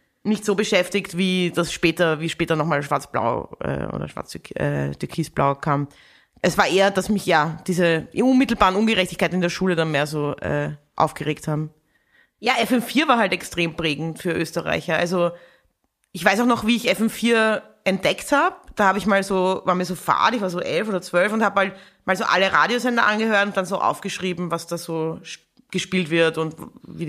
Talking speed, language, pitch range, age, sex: 195 wpm, German, 170-220 Hz, 20-39, female